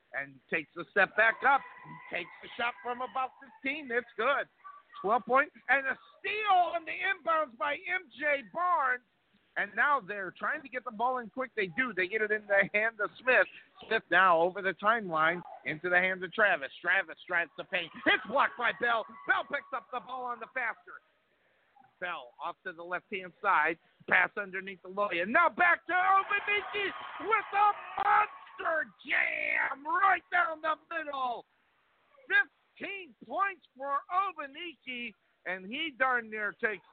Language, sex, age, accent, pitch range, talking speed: English, male, 50-69, American, 210-315 Hz, 165 wpm